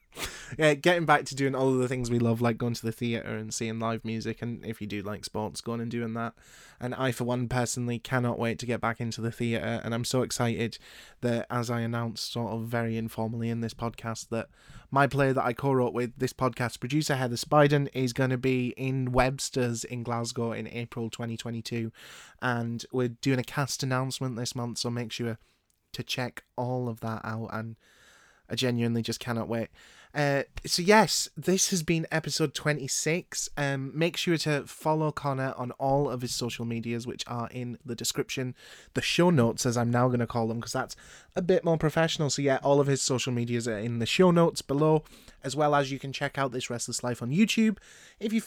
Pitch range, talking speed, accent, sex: 115-140 Hz, 215 wpm, British, male